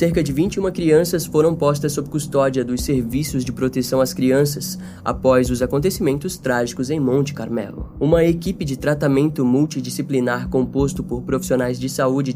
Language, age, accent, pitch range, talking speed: Portuguese, 10-29, Brazilian, 125-155 Hz, 150 wpm